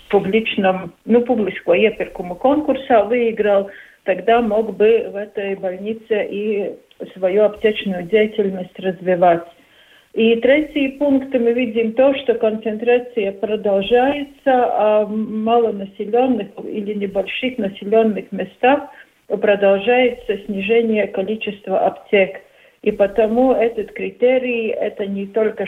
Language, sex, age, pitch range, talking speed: Russian, female, 50-69, 200-245 Hz, 100 wpm